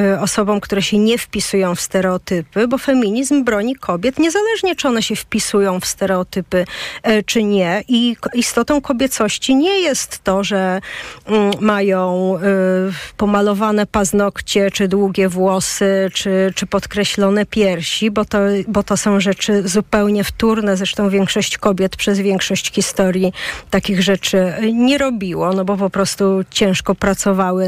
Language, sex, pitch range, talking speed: Polish, female, 195-245 Hz, 130 wpm